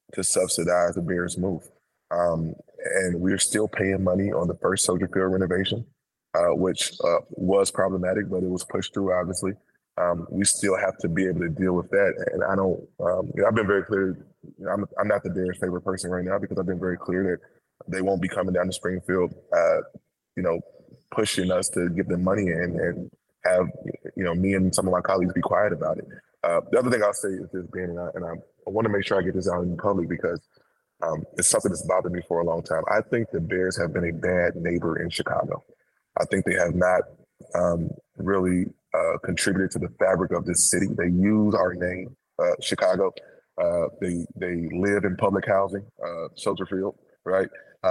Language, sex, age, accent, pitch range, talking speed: English, male, 20-39, American, 90-100 Hz, 215 wpm